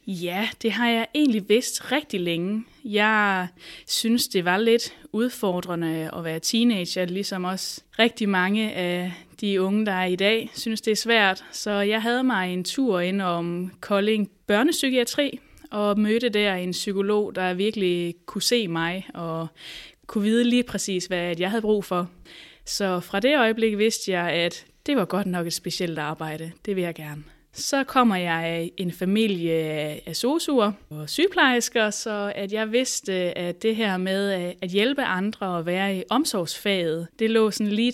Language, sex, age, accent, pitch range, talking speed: Danish, female, 20-39, native, 180-230 Hz, 170 wpm